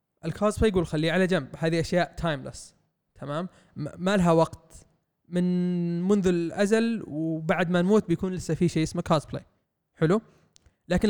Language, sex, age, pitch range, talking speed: Arabic, male, 20-39, 160-195 Hz, 140 wpm